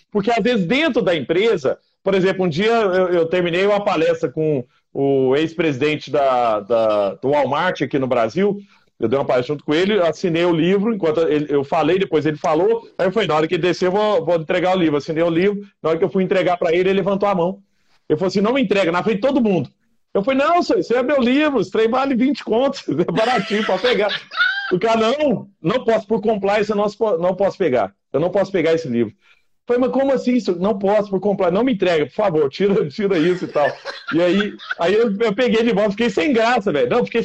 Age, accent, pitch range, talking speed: 40-59, Brazilian, 185-260 Hz, 235 wpm